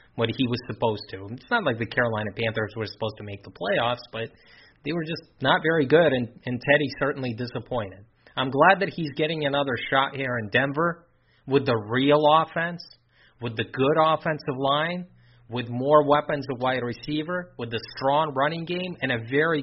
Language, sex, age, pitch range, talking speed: English, male, 30-49, 120-150 Hz, 190 wpm